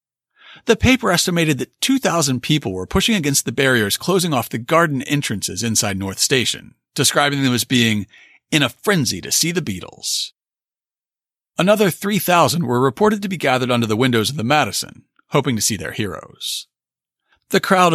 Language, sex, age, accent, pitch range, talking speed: English, male, 40-59, American, 120-195 Hz, 165 wpm